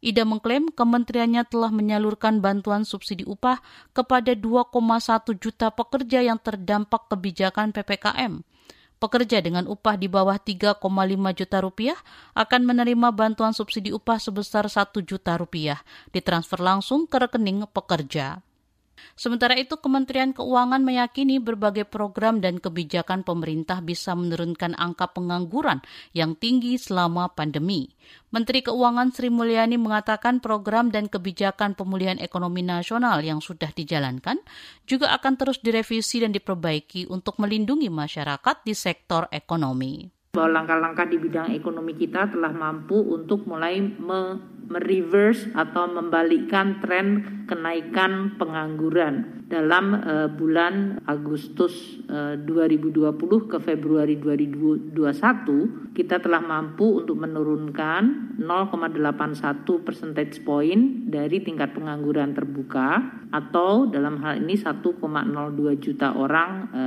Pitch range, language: 165-230 Hz, Indonesian